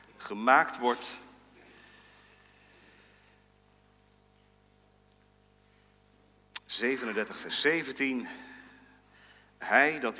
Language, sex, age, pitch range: Dutch, male, 40-59, 105-145 Hz